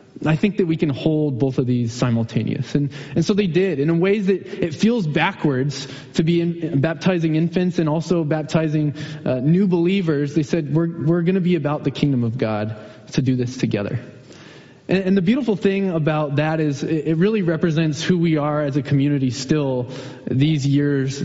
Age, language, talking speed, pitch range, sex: 20-39, English, 200 wpm, 140-180 Hz, male